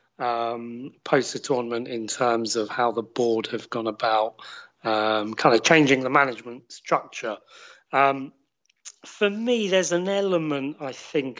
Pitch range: 120-150 Hz